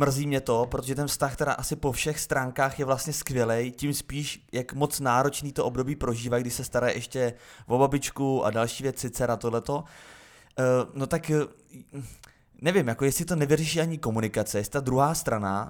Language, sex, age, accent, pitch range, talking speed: Czech, male, 20-39, native, 120-145 Hz, 180 wpm